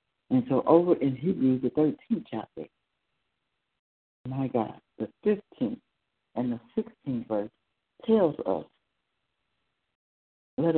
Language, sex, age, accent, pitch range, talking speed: English, female, 60-79, American, 125-170 Hz, 105 wpm